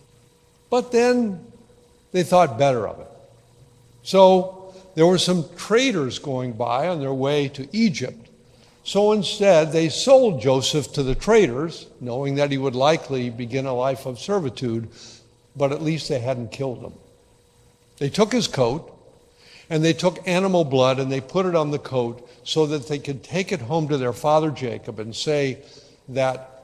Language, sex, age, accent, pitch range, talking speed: English, male, 60-79, American, 125-170 Hz, 165 wpm